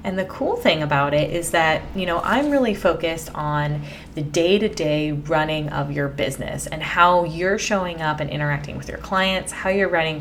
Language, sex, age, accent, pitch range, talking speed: English, female, 20-39, American, 150-195 Hz, 195 wpm